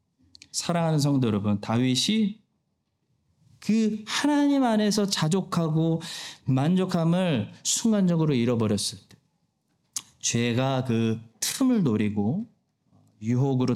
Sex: male